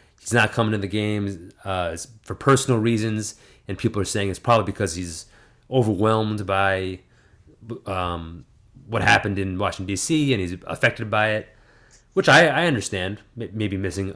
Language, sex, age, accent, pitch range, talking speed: English, male, 30-49, American, 100-125 Hz, 155 wpm